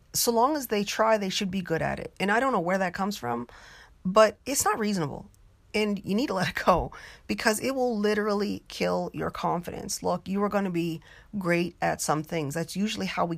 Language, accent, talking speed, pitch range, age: English, American, 230 wpm, 165-205 Hz, 30-49